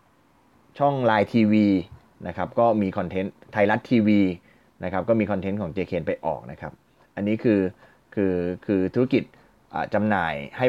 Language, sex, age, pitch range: Thai, male, 20-39, 100-130 Hz